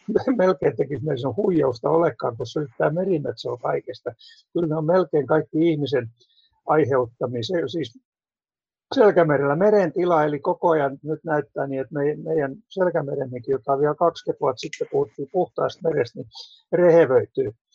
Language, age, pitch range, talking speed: Finnish, 60-79, 140-180 Hz, 135 wpm